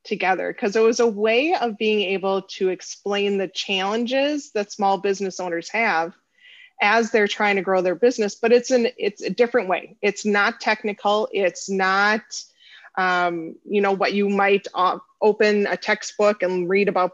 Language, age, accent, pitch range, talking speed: English, 30-49, American, 190-235 Hz, 170 wpm